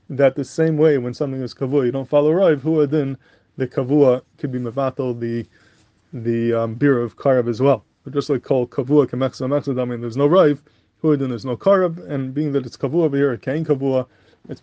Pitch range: 120-145 Hz